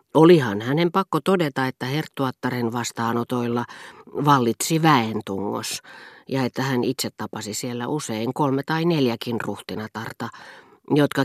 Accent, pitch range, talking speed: native, 115-150 Hz, 110 wpm